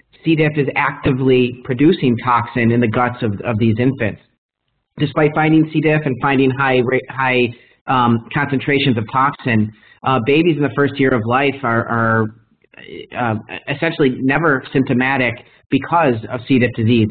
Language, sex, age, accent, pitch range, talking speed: English, male, 30-49, American, 115-140 Hz, 155 wpm